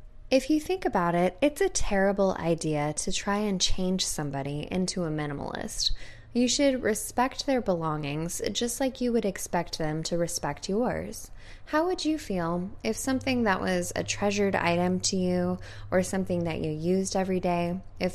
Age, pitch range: 10-29, 165-220 Hz